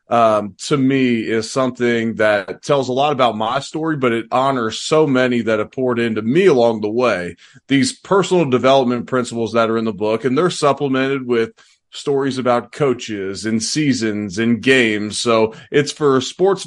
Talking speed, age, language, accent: 175 wpm, 30-49, English, American